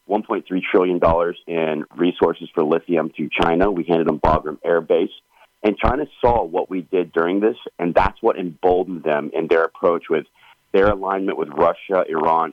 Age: 40-59